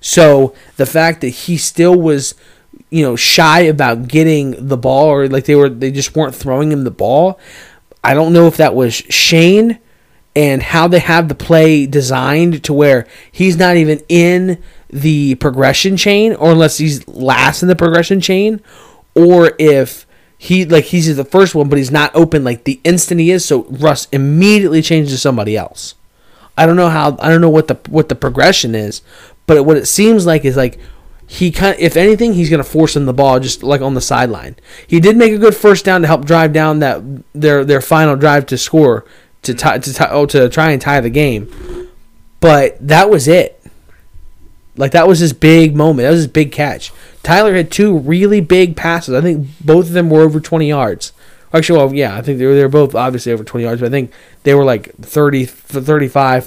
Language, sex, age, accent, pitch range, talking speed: English, male, 20-39, American, 135-170 Hz, 210 wpm